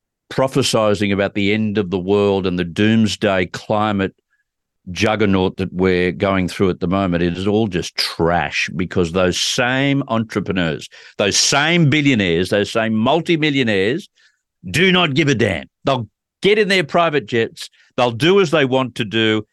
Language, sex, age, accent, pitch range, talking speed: English, male, 50-69, Australian, 95-135 Hz, 160 wpm